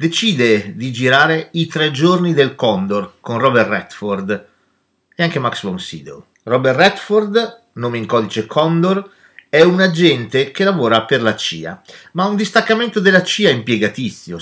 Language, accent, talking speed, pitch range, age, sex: Italian, native, 150 wpm, 125-195 Hz, 40-59, male